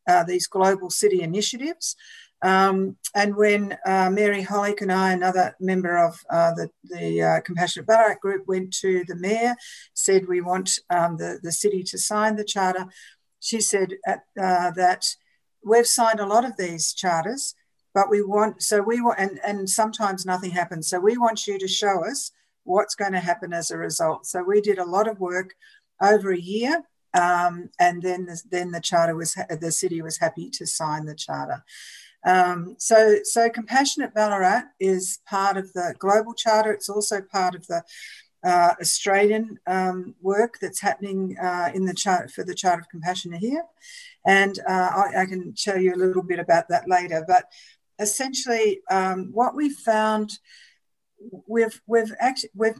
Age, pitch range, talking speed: 50-69, 180-220 Hz, 175 wpm